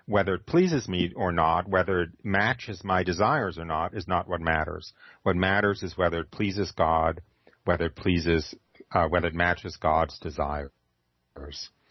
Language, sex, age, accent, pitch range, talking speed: English, male, 40-59, American, 85-100 Hz, 165 wpm